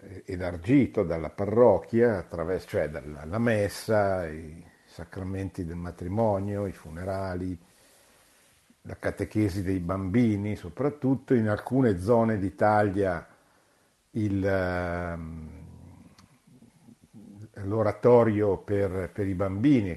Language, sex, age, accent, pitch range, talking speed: Italian, male, 50-69, native, 90-115 Hz, 80 wpm